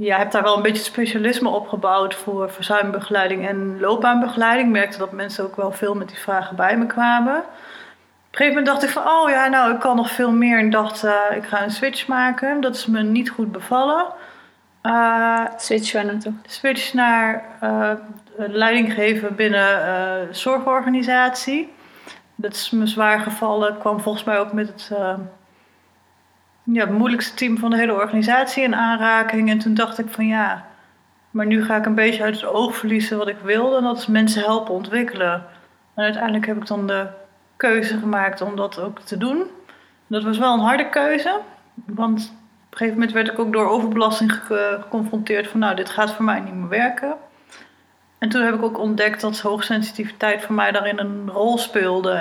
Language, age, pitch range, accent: Dutch, 30-49, 205-235 Hz, Dutch